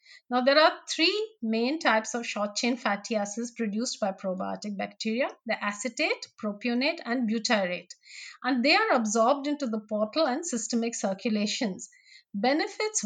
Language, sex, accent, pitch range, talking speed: English, female, Indian, 215-300 Hz, 140 wpm